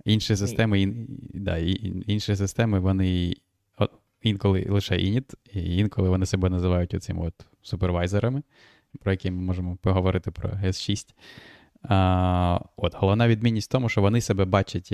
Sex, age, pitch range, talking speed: male, 20-39, 95-105 Hz, 135 wpm